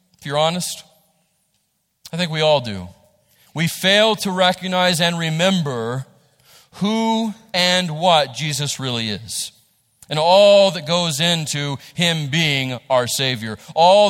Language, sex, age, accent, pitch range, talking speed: English, male, 40-59, American, 120-155 Hz, 125 wpm